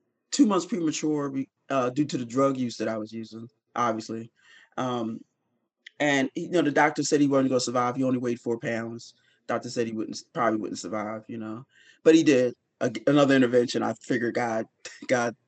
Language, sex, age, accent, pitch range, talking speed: English, male, 30-49, American, 120-145 Hz, 195 wpm